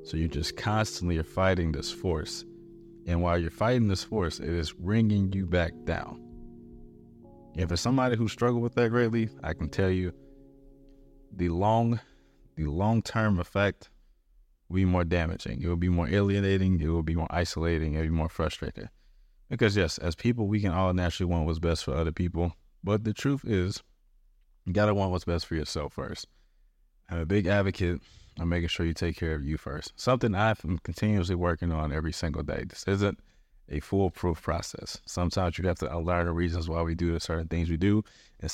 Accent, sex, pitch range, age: American, male, 80-100 Hz, 30-49